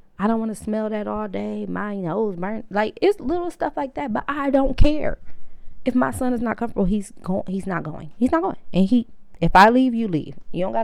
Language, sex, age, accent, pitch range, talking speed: English, female, 20-39, American, 170-220 Hz, 250 wpm